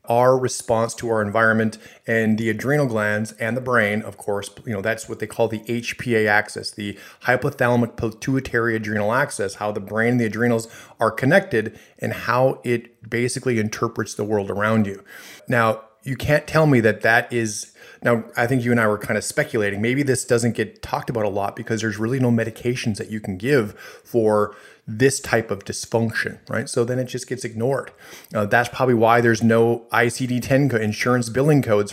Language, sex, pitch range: English, male, 110-125 Hz